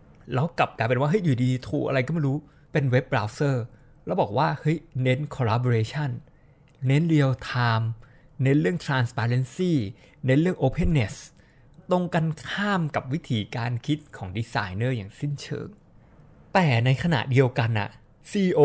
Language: Thai